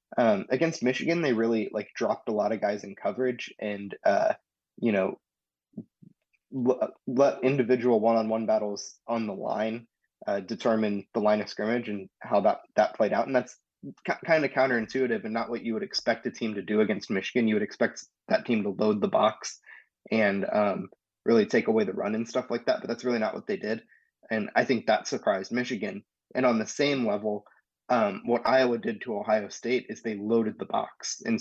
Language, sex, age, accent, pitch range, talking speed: English, male, 20-39, American, 110-125 Hz, 205 wpm